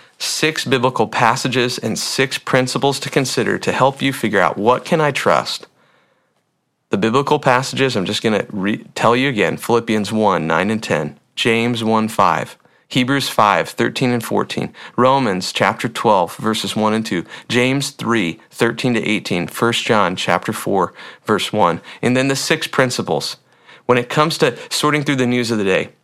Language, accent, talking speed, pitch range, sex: English, American, 175 wpm, 110-135 Hz, male